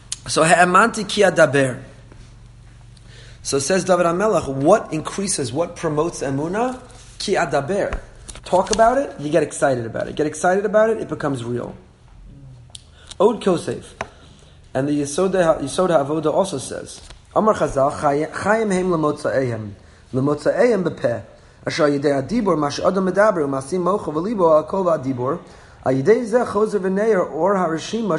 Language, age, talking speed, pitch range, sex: English, 30-49, 135 wpm, 130-180 Hz, male